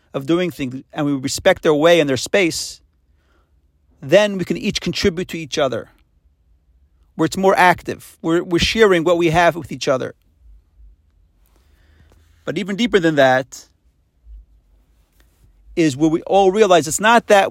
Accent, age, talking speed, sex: American, 40-59, 155 wpm, male